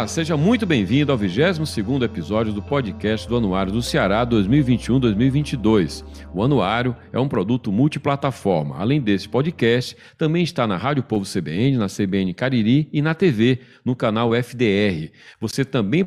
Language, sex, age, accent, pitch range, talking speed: Portuguese, male, 40-59, Brazilian, 100-135 Hz, 150 wpm